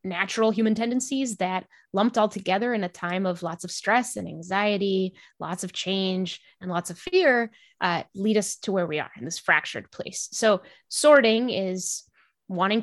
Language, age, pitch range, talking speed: English, 20-39, 185-225 Hz, 180 wpm